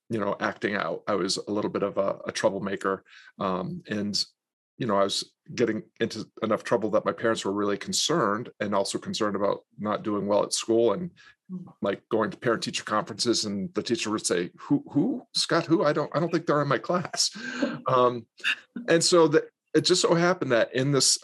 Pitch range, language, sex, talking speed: 105-150 Hz, English, male, 205 wpm